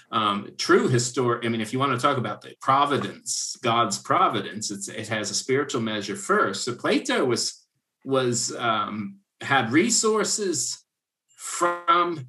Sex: male